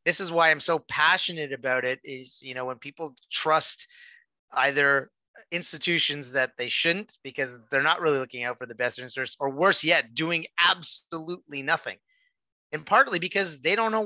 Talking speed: 175 wpm